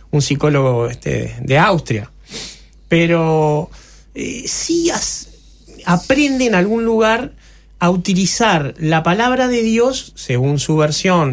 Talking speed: 105 wpm